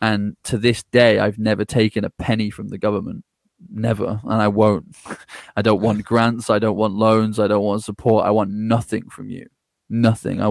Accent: British